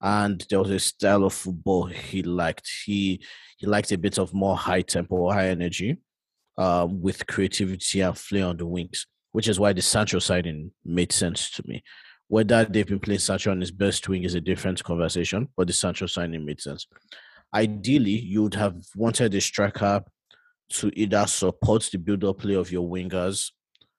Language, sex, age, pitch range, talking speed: English, male, 30-49, 90-105 Hz, 185 wpm